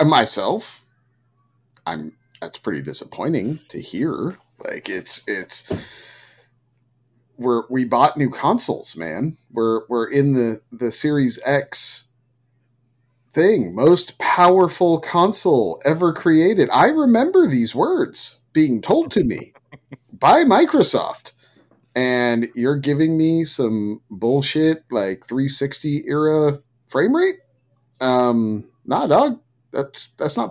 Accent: American